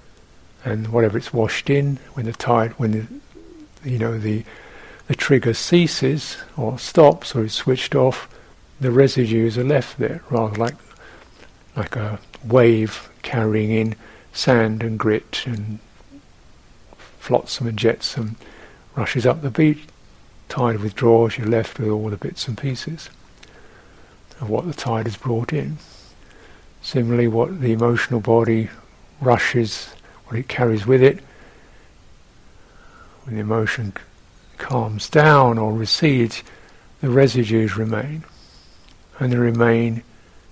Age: 60-79